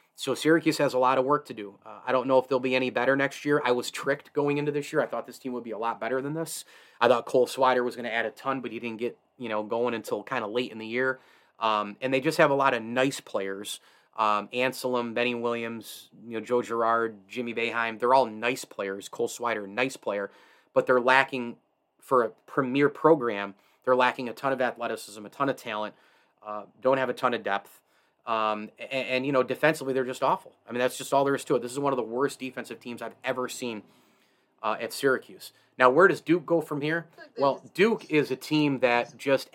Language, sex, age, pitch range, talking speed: English, male, 30-49, 115-135 Hz, 245 wpm